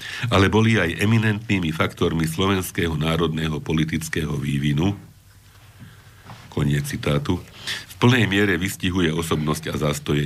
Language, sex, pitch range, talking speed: Slovak, male, 80-100 Hz, 105 wpm